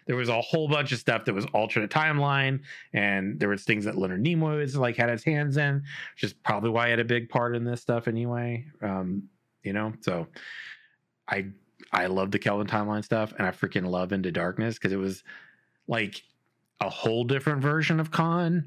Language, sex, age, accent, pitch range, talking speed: English, male, 30-49, American, 100-135 Hz, 205 wpm